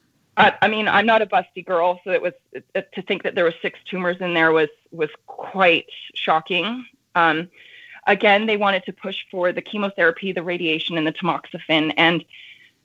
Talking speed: 190 wpm